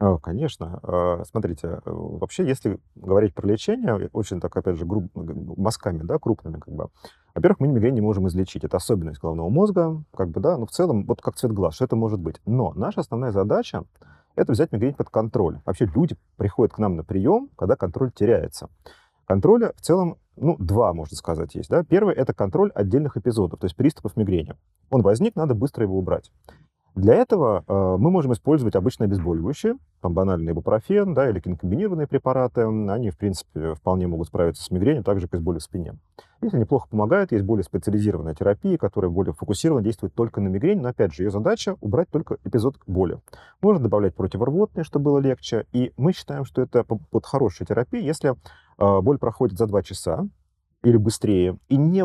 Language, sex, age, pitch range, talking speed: Russian, male, 30-49, 95-130 Hz, 185 wpm